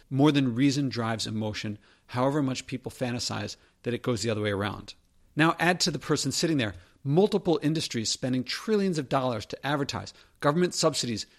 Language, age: English, 50-69